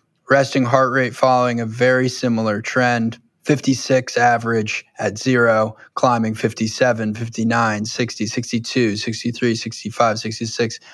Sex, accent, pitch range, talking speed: male, American, 115-140 Hz, 110 wpm